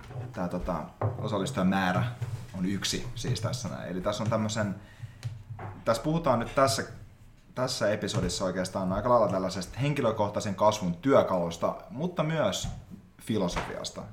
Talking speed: 115 wpm